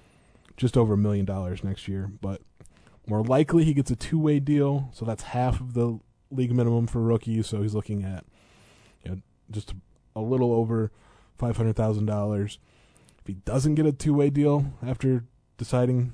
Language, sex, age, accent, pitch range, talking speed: English, male, 20-39, American, 100-125 Hz, 180 wpm